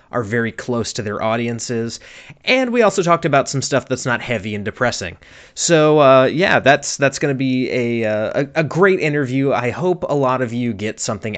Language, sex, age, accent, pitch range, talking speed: English, male, 30-49, American, 110-135 Hz, 200 wpm